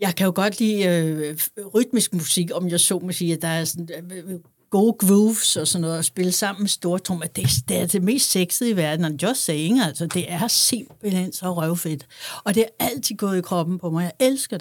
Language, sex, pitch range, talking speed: Danish, female, 160-205 Hz, 225 wpm